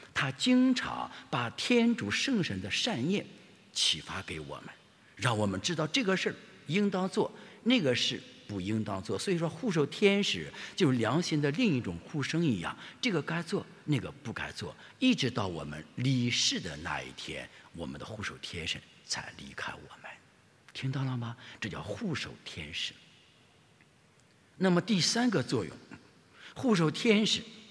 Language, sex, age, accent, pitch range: English, male, 50-69, Chinese, 125-200 Hz